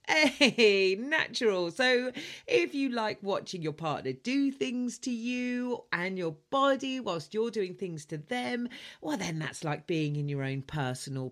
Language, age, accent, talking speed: English, 40-59, British, 165 wpm